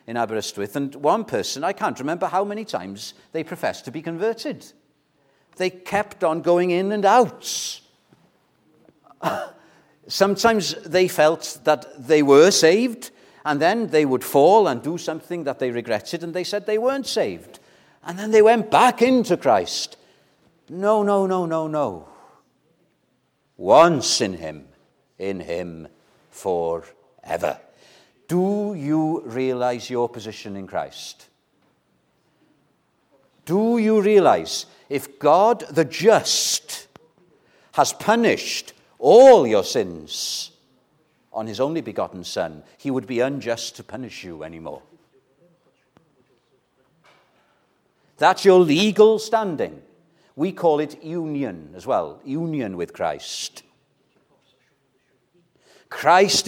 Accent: British